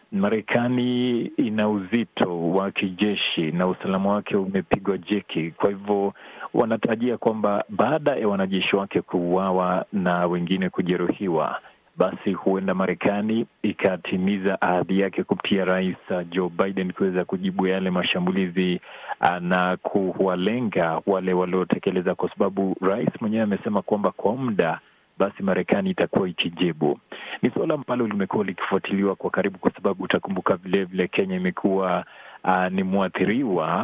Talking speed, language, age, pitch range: 120 wpm, Swahili, 40-59, 95-105 Hz